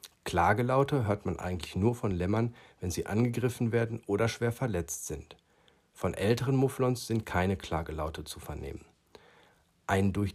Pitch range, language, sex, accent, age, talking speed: 90-115 Hz, German, male, German, 50-69, 145 wpm